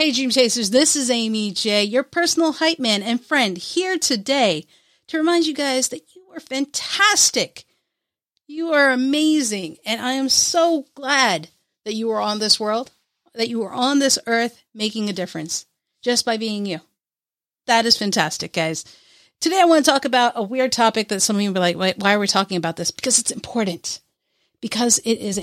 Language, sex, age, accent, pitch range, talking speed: English, female, 40-59, American, 200-260 Hz, 195 wpm